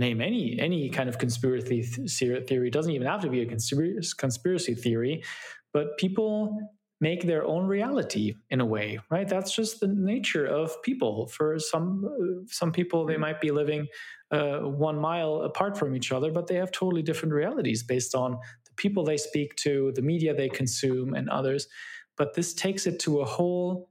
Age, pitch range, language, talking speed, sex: 20-39, 125-180 Hz, German, 185 wpm, male